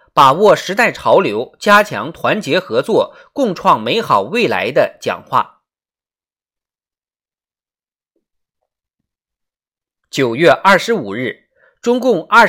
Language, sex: Chinese, male